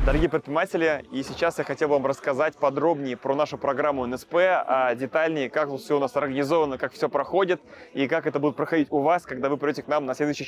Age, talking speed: 20-39, 210 wpm